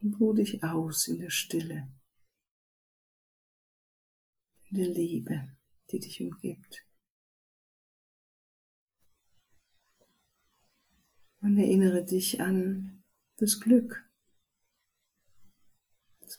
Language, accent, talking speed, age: German, German, 75 wpm, 60-79